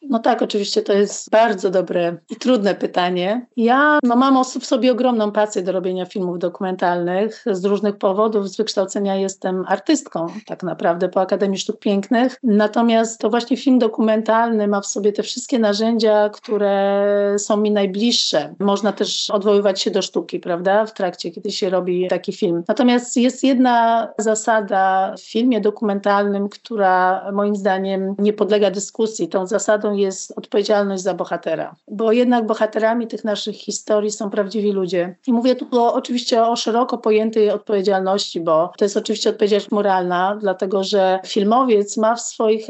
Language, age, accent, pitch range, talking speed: Polish, 40-59, native, 195-230 Hz, 155 wpm